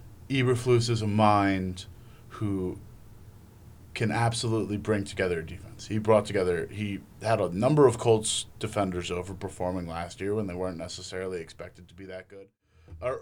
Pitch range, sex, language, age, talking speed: 95-115 Hz, male, English, 30-49, 155 wpm